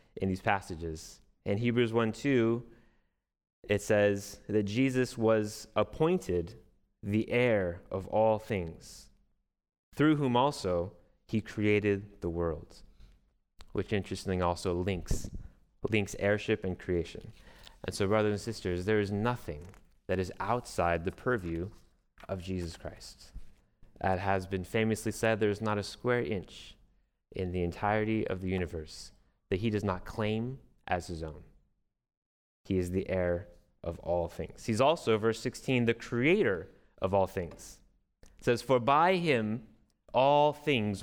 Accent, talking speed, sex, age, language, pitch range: American, 140 wpm, male, 30-49, English, 95-120 Hz